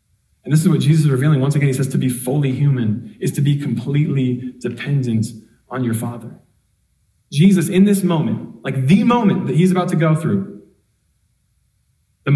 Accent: American